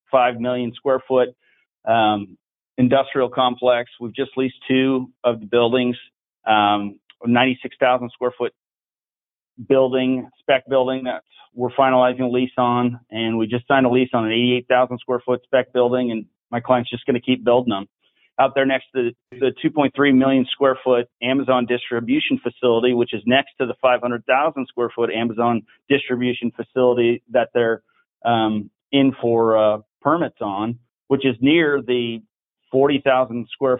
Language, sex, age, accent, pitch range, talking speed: English, male, 40-59, American, 120-135 Hz, 155 wpm